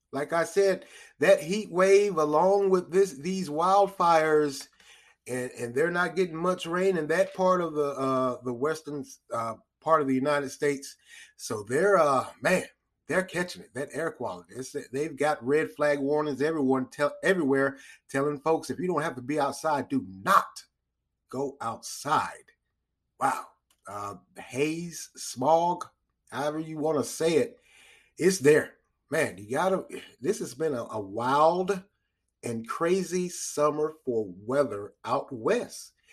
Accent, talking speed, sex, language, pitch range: American, 155 wpm, male, English, 135-185 Hz